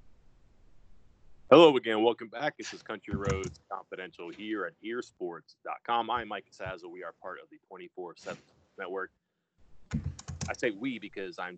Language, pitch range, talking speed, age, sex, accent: English, 95-140 Hz, 140 wpm, 30-49, male, American